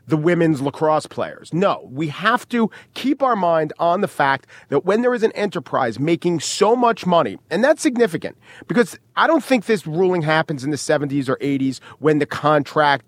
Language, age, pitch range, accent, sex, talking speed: English, 40-59, 150-225 Hz, American, male, 195 wpm